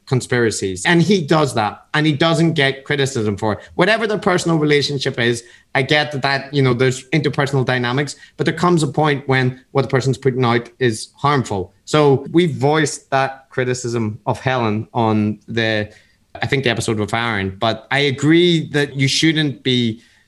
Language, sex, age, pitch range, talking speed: English, male, 30-49, 120-155 Hz, 180 wpm